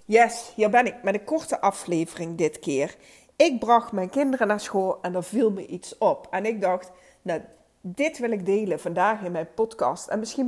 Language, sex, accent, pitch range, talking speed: Dutch, female, Dutch, 180-225 Hz, 205 wpm